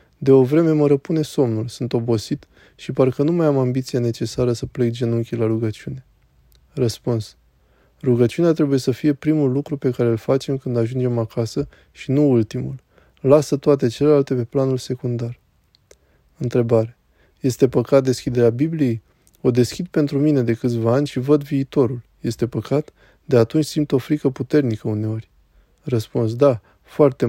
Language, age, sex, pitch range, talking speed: Romanian, 20-39, male, 115-140 Hz, 155 wpm